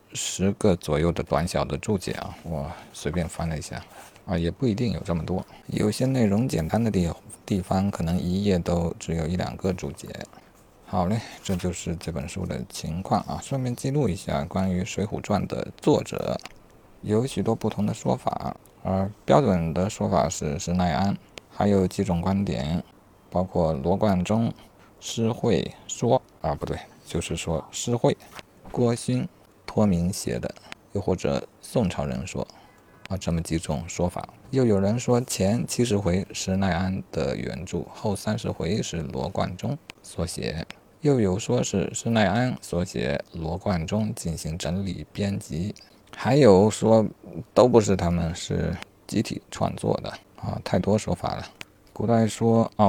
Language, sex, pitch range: Chinese, male, 85-110 Hz